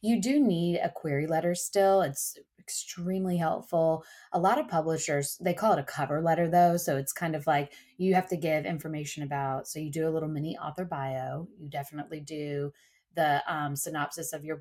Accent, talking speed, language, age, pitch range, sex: American, 195 wpm, English, 30-49, 145-175 Hz, female